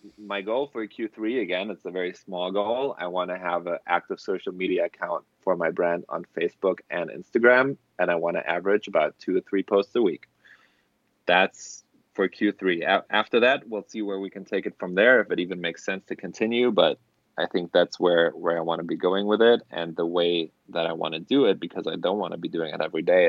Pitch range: 85-110 Hz